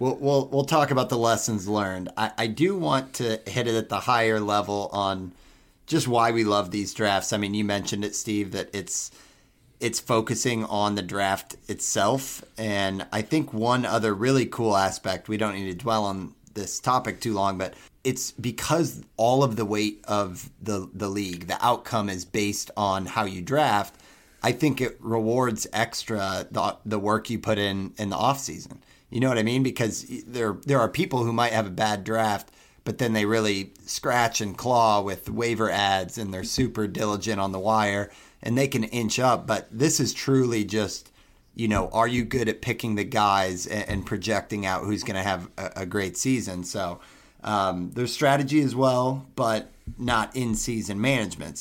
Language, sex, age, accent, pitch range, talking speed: English, male, 30-49, American, 100-120 Hz, 195 wpm